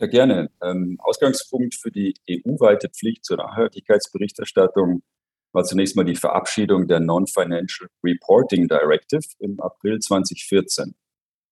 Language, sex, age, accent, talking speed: German, male, 40-59, German, 105 wpm